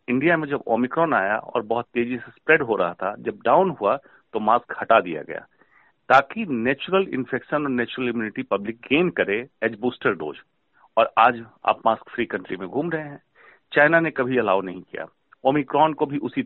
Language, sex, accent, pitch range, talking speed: Hindi, male, native, 120-160 Hz, 115 wpm